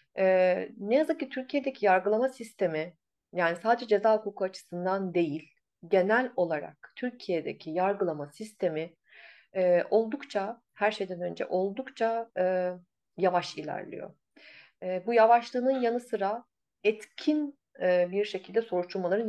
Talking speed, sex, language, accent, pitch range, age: 115 wpm, female, Turkish, native, 175-230 Hz, 30-49